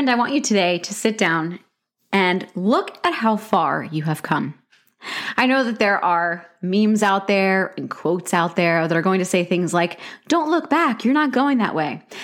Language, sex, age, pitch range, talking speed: English, female, 20-39, 175-235 Hz, 205 wpm